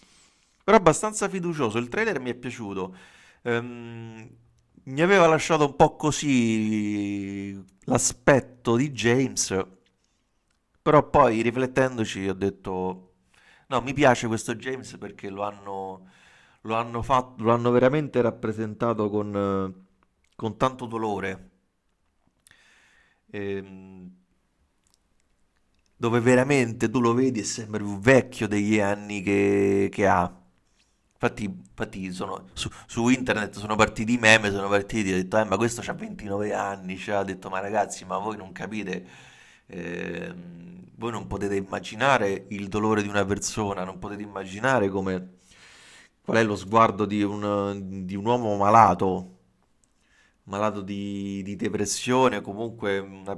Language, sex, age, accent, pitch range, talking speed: Italian, male, 40-59, native, 95-120 Hz, 130 wpm